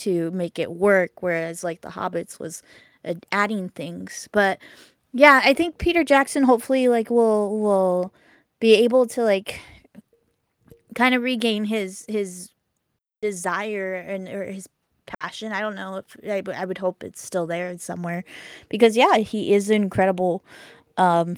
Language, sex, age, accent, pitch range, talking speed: English, female, 10-29, American, 180-220 Hz, 150 wpm